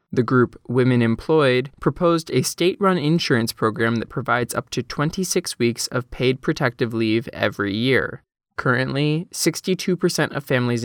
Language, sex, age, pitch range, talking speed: English, male, 20-39, 115-150 Hz, 140 wpm